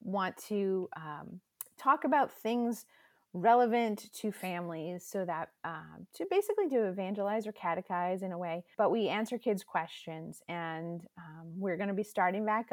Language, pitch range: English, 170-220 Hz